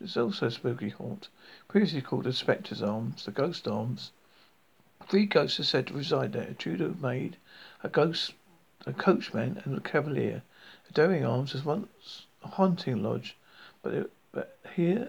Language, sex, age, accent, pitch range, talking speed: English, male, 50-69, British, 130-175 Hz, 165 wpm